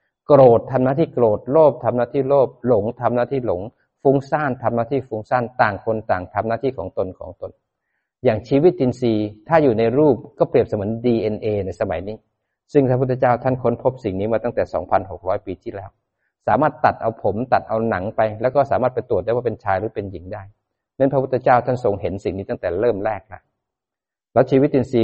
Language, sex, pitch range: Thai, male, 105-130 Hz